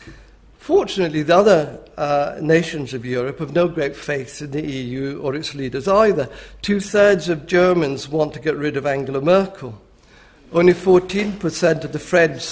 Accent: British